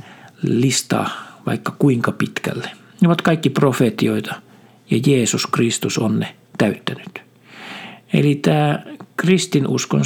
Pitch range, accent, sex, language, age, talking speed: 120-160 Hz, native, male, Finnish, 60-79, 100 wpm